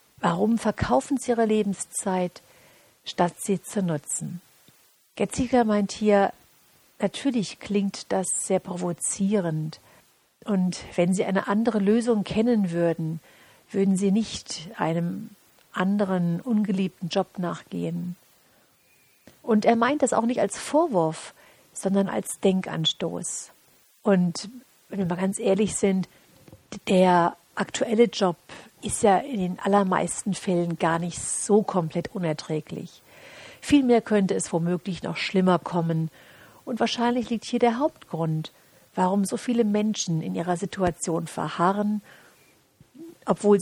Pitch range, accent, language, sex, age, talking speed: 175-215 Hz, German, German, female, 50-69, 120 wpm